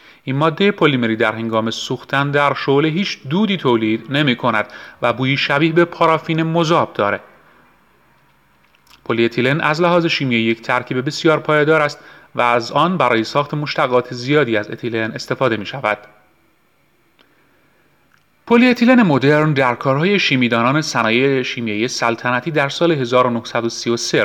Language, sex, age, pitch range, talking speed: Persian, male, 30-49, 115-150 Hz, 130 wpm